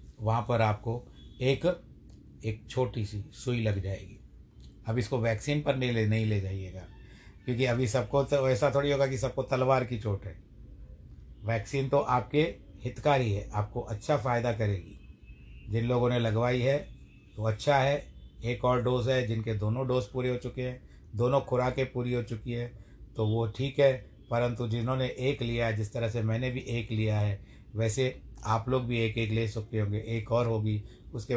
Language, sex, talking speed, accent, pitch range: Hindi, male, 185 wpm, native, 110-130 Hz